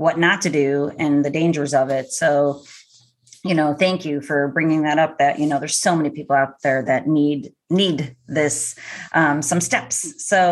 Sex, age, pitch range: female, 30-49, 150-180 Hz